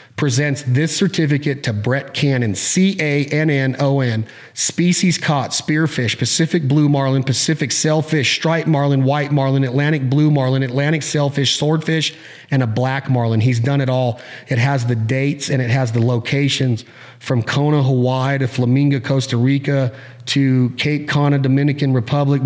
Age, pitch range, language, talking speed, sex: 30-49, 125-145 Hz, English, 145 wpm, male